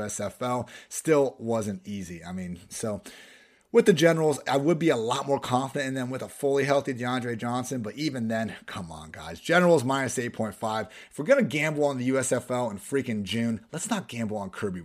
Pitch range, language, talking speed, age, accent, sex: 105-140 Hz, English, 200 wpm, 30-49, American, male